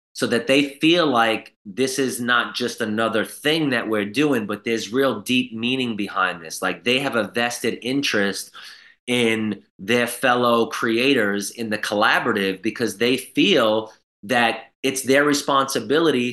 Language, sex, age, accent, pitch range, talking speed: English, male, 30-49, American, 110-135 Hz, 150 wpm